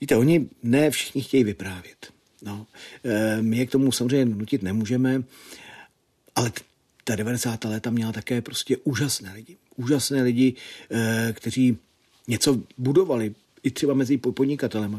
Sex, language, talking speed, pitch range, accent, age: male, Czech, 130 wpm, 105-125 Hz, native, 40-59